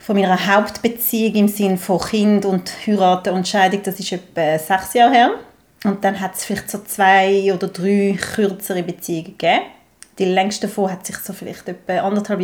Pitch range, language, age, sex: 185-205 Hz, German, 30-49, female